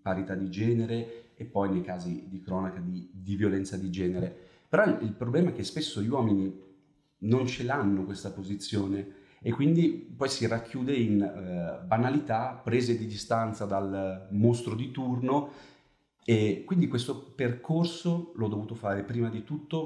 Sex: male